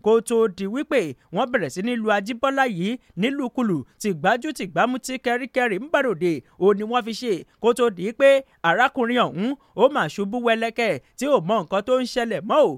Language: English